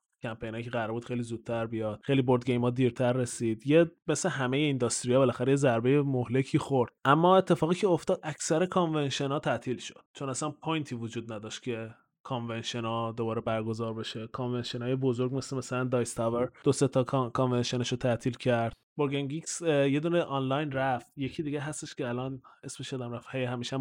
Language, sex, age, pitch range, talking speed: Persian, male, 20-39, 120-145 Hz, 160 wpm